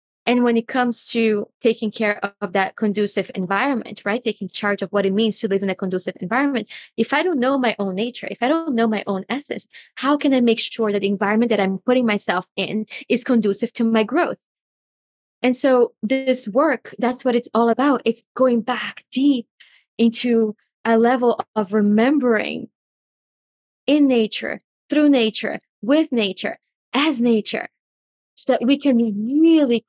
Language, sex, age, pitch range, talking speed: English, female, 20-39, 215-255 Hz, 175 wpm